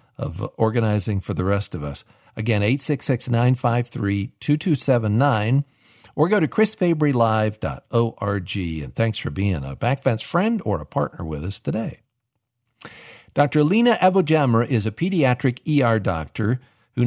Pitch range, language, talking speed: 110-145 Hz, English, 125 wpm